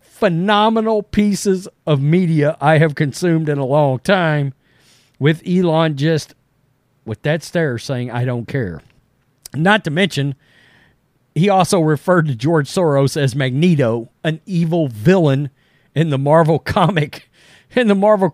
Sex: male